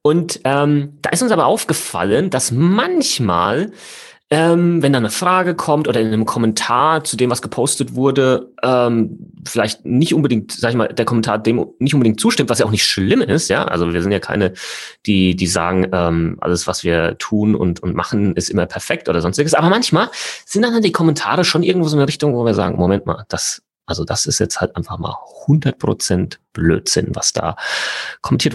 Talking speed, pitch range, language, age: 200 wpm, 100-155 Hz, German, 30-49